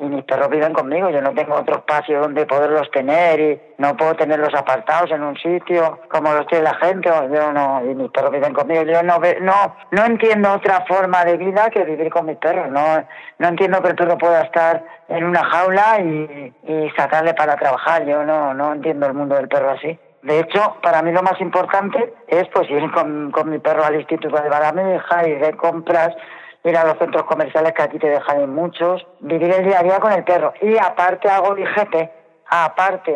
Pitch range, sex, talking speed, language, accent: 150-180 Hz, female, 215 wpm, Spanish, Spanish